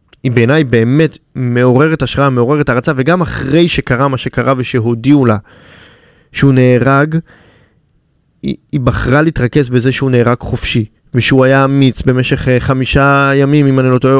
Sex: male